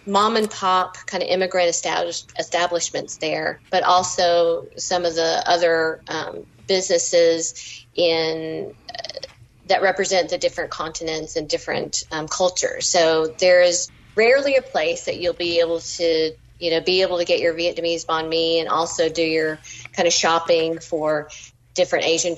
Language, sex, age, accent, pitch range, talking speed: English, female, 40-59, American, 160-180 Hz, 150 wpm